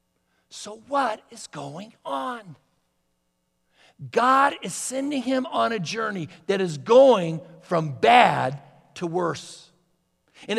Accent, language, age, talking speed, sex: American, English, 60-79, 115 wpm, male